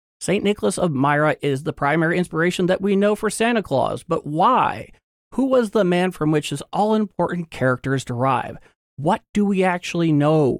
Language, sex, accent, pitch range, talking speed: English, male, American, 120-180 Hz, 175 wpm